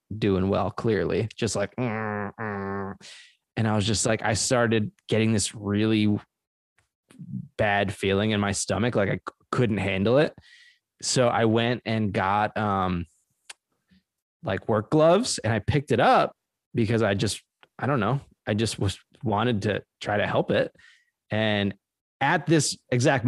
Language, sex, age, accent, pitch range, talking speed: English, male, 20-39, American, 105-130 Hz, 150 wpm